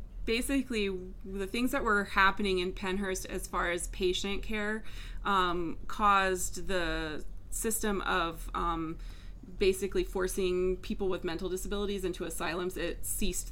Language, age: English, 20-39